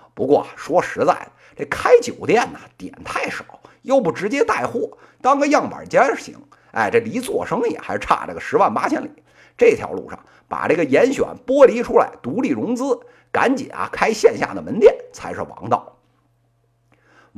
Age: 50-69